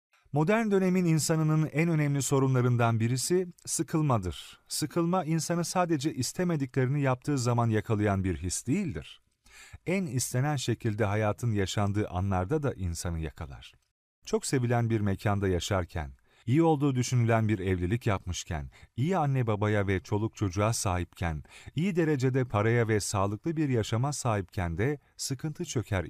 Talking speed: 130 wpm